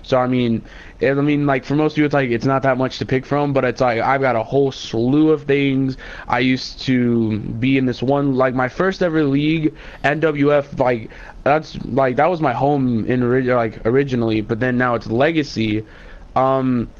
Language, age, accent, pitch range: English, 20-39, American, 115-140 Hz